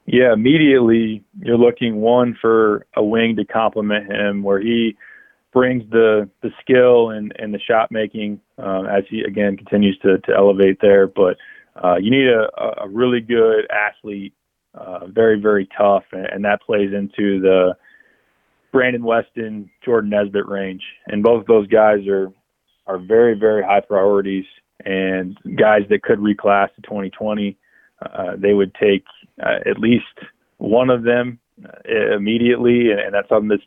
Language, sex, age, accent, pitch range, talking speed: English, male, 20-39, American, 100-115 Hz, 160 wpm